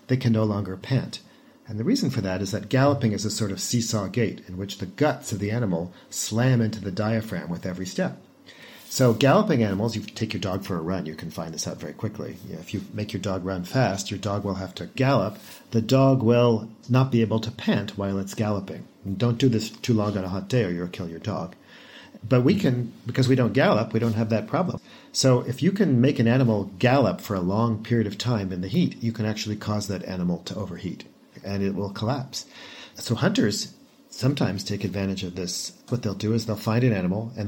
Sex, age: male, 50-69